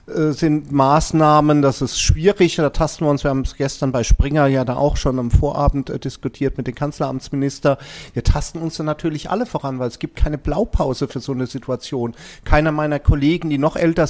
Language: German